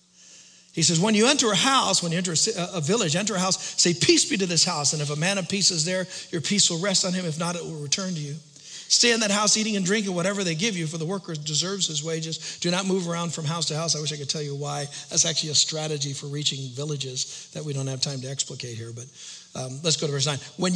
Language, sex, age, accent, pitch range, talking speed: English, male, 50-69, American, 155-195 Hz, 280 wpm